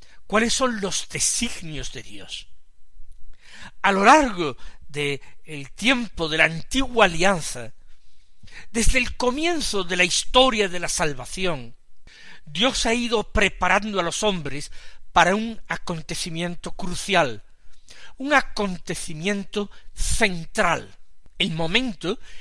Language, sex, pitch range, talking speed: Spanish, male, 145-210 Hz, 105 wpm